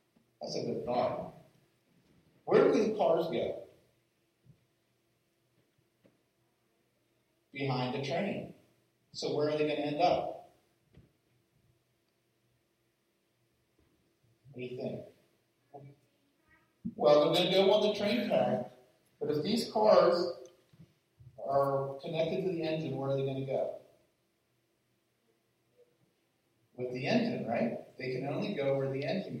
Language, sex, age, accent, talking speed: English, male, 50-69, American, 120 wpm